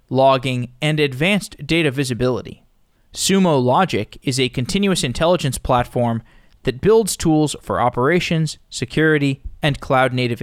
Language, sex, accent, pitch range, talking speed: English, male, American, 120-155 Hz, 115 wpm